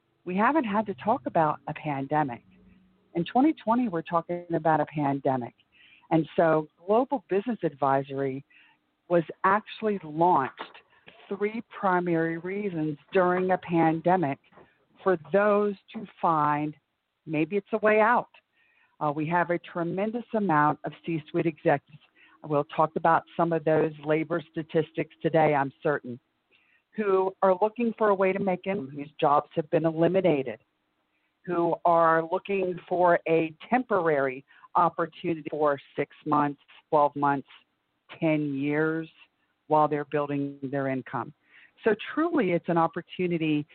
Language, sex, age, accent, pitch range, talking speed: English, female, 50-69, American, 150-190 Hz, 130 wpm